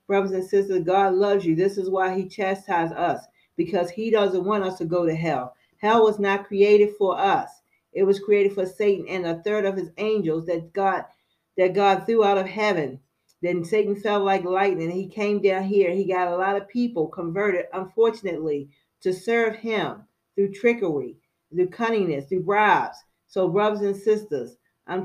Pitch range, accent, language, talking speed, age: 170-200 Hz, American, English, 185 wpm, 40-59